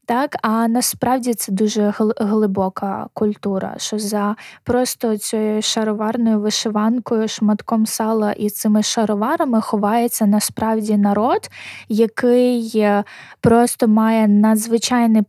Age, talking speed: 20-39, 100 wpm